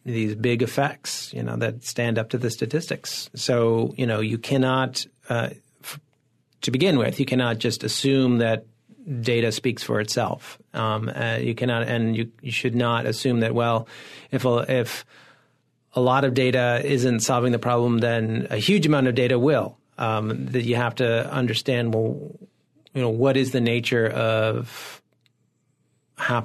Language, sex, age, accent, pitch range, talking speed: English, male, 40-59, American, 115-130 Hz, 165 wpm